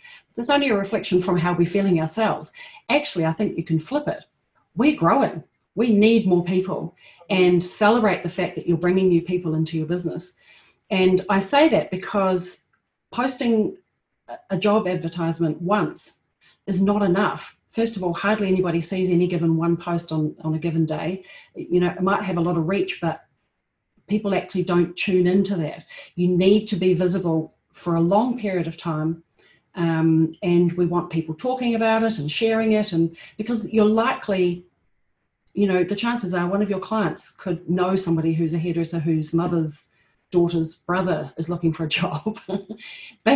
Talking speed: 175 wpm